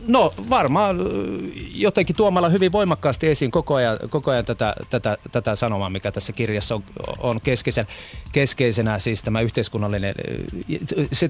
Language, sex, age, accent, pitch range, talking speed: Finnish, male, 30-49, native, 110-150 Hz, 140 wpm